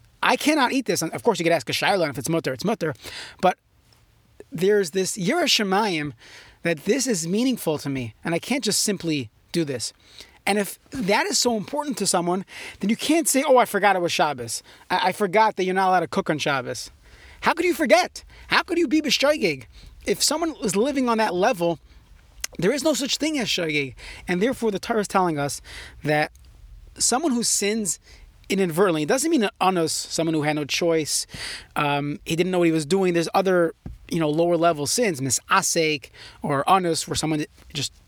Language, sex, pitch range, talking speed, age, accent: English, male, 155-225 Hz, 205 wpm, 30-49, American